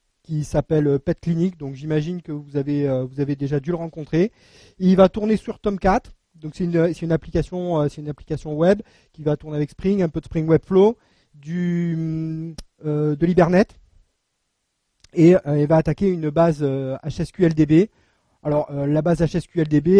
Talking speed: 175 wpm